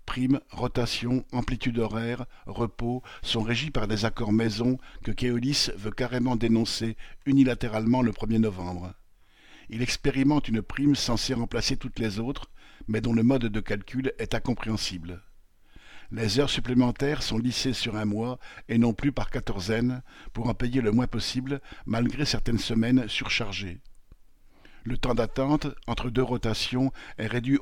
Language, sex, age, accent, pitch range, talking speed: French, male, 50-69, French, 110-130 Hz, 150 wpm